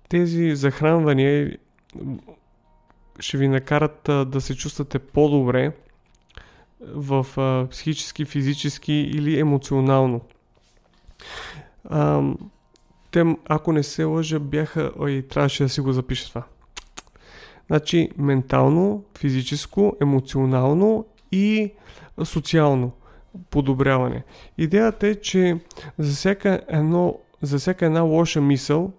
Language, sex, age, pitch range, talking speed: Bulgarian, male, 30-49, 135-165 Hz, 95 wpm